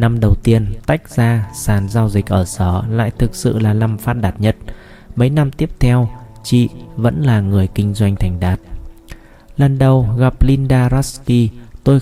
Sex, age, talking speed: male, 20-39, 180 wpm